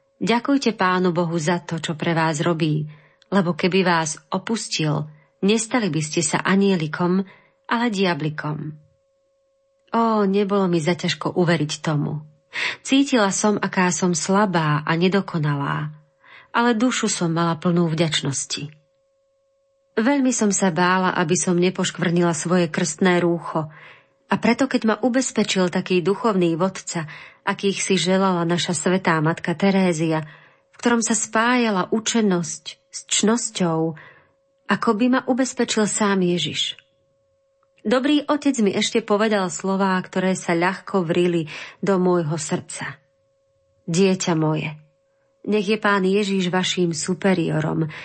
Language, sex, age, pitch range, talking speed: Slovak, female, 40-59, 165-210 Hz, 125 wpm